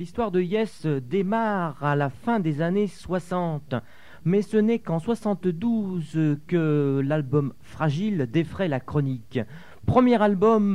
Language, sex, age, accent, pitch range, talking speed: French, male, 40-59, French, 130-180 Hz, 130 wpm